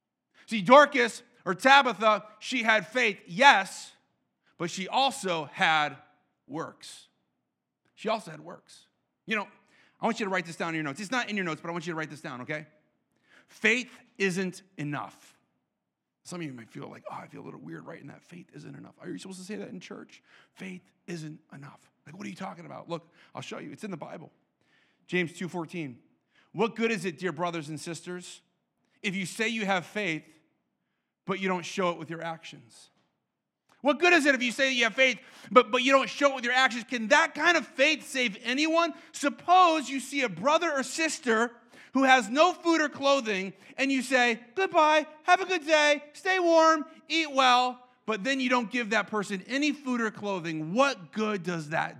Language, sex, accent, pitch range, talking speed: English, male, American, 175-265 Hz, 205 wpm